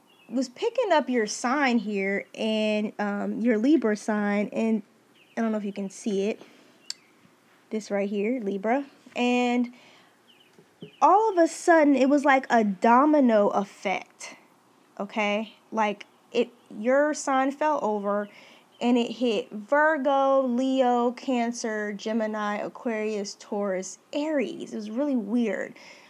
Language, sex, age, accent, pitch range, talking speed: English, female, 20-39, American, 215-275 Hz, 130 wpm